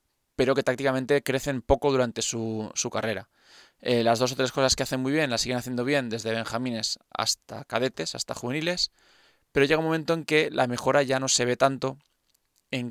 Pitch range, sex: 120-135 Hz, male